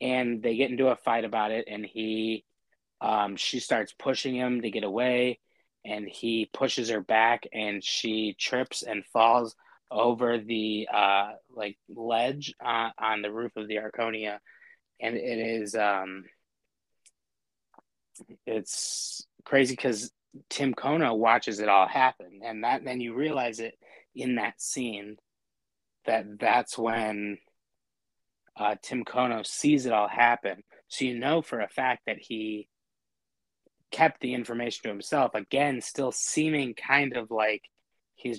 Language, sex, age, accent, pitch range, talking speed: English, male, 20-39, American, 110-120 Hz, 145 wpm